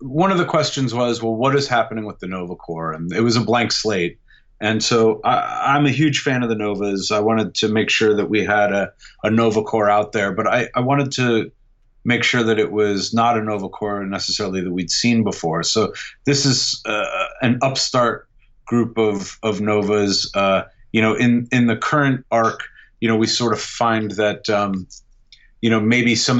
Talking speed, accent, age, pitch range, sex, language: 210 wpm, American, 30-49, 105-120 Hz, male, English